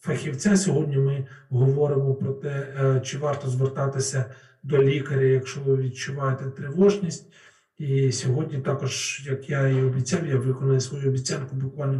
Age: 40-59